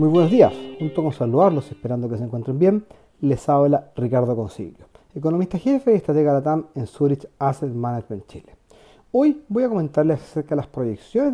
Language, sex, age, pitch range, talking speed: Spanish, male, 40-59, 135-195 Hz, 185 wpm